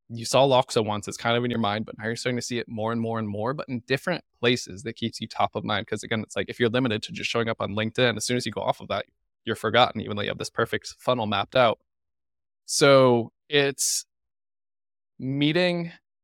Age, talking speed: 20-39, 250 wpm